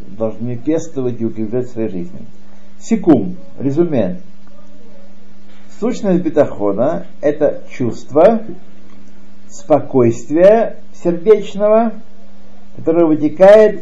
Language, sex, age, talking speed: Russian, male, 60-79, 75 wpm